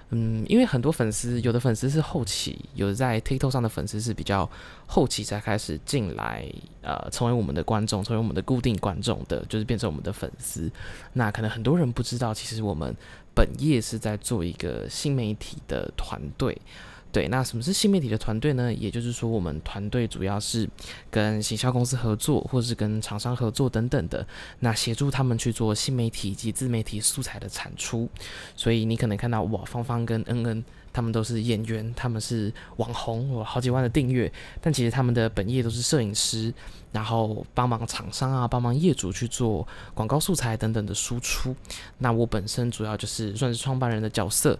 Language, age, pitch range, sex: Chinese, 20-39, 105-125 Hz, male